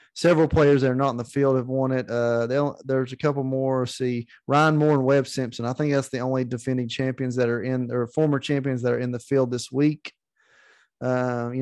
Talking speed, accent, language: 230 wpm, American, English